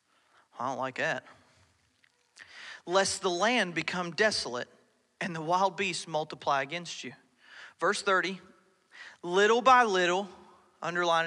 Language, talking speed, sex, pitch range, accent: English, 115 wpm, male, 170-230 Hz, American